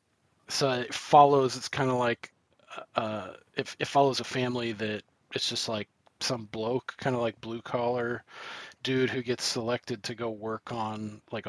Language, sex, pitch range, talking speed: English, male, 110-135 Hz, 170 wpm